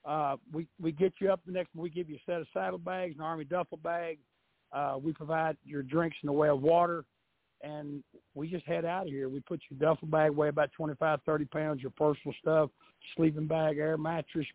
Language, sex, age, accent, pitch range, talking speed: English, male, 60-79, American, 150-175 Hz, 225 wpm